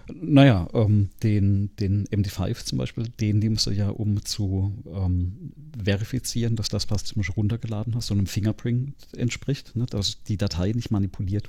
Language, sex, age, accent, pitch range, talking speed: German, male, 40-59, German, 100-115 Hz, 165 wpm